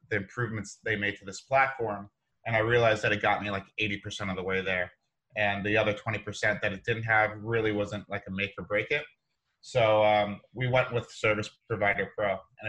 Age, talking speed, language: 30-49, 215 wpm, English